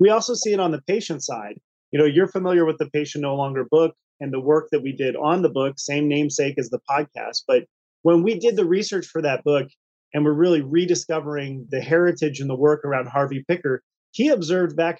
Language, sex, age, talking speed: English, male, 30-49, 225 wpm